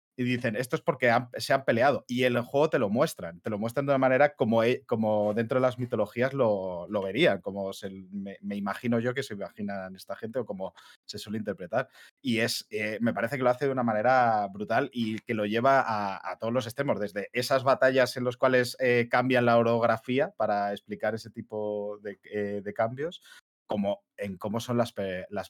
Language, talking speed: Spanish, 215 wpm